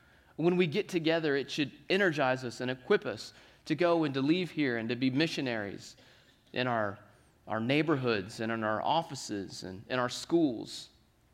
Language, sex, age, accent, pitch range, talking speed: English, male, 30-49, American, 130-165 Hz, 175 wpm